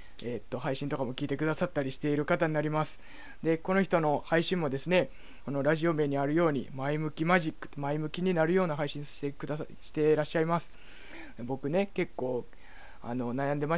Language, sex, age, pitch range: Japanese, male, 20-39, 130-160 Hz